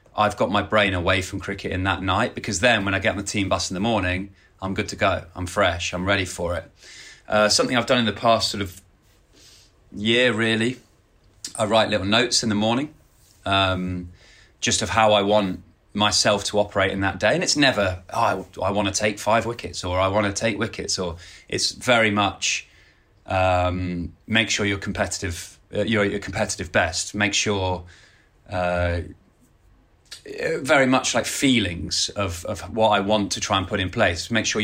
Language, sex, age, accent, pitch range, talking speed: English, male, 30-49, British, 95-110 Hz, 195 wpm